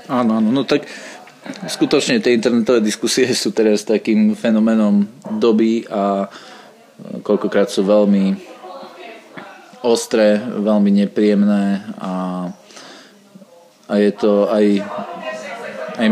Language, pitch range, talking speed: Slovak, 100-115 Hz, 95 wpm